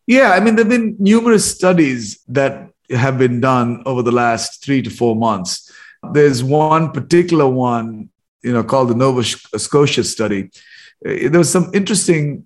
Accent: Indian